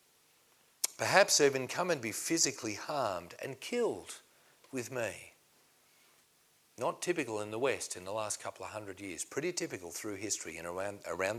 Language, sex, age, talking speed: English, male, 40-59, 160 wpm